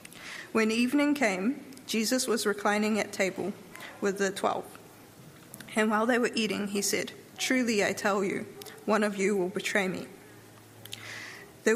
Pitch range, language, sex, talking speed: 195-230 Hz, English, female, 150 wpm